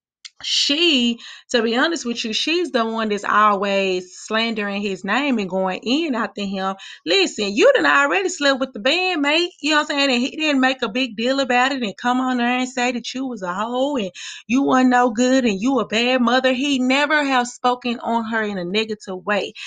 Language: English